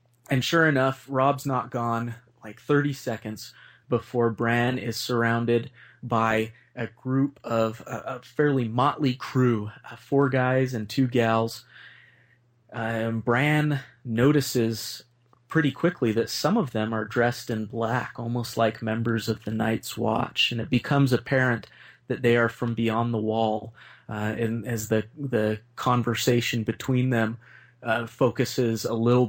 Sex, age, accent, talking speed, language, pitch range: male, 30-49, American, 145 wpm, English, 115-125 Hz